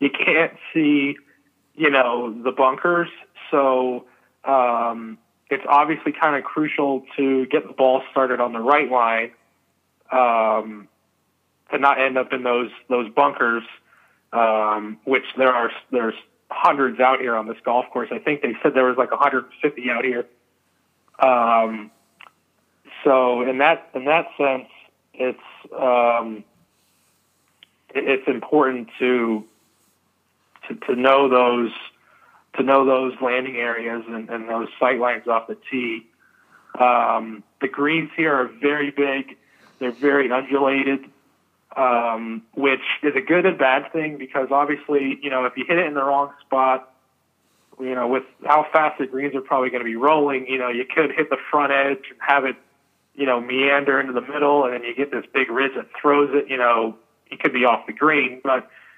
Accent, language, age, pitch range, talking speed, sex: American, English, 30-49, 120-140 Hz, 165 wpm, male